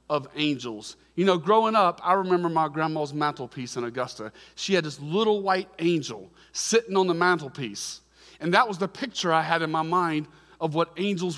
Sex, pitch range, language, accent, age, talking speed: male, 160-205 Hz, English, American, 40-59, 190 wpm